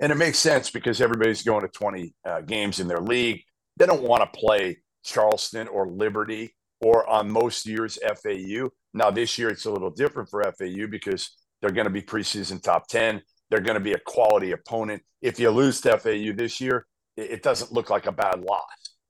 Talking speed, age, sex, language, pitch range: 205 wpm, 50-69, male, English, 105-130 Hz